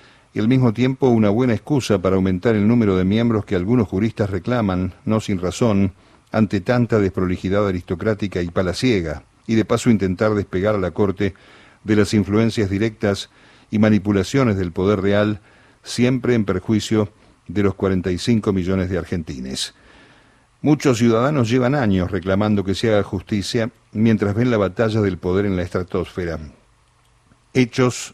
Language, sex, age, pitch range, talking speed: Spanish, male, 50-69, 95-115 Hz, 150 wpm